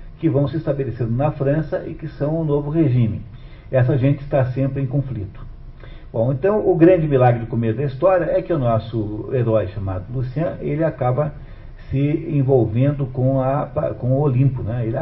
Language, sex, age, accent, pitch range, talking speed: Portuguese, male, 50-69, Brazilian, 115-145 Hz, 185 wpm